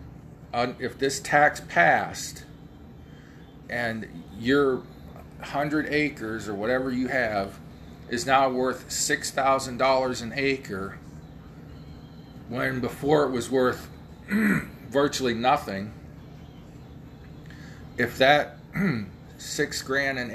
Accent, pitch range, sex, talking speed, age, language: American, 120-140 Hz, male, 90 wpm, 40-59, English